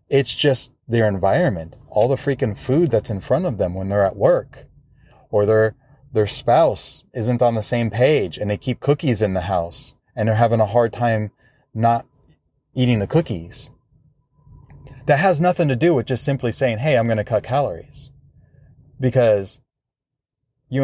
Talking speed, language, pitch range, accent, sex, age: 175 wpm, English, 110-140 Hz, American, male, 30-49